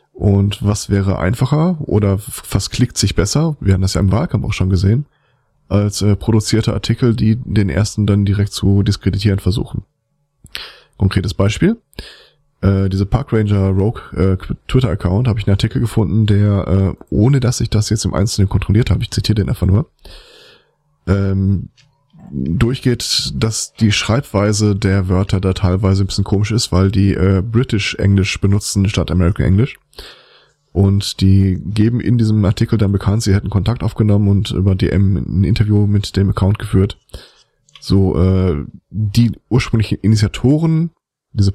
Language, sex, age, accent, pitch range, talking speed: German, male, 20-39, German, 95-115 Hz, 160 wpm